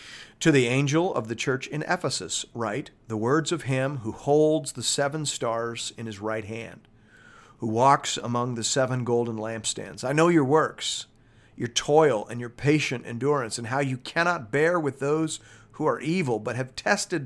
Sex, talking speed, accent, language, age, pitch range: male, 180 wpm, American, English, 50-69, 115-150 Hz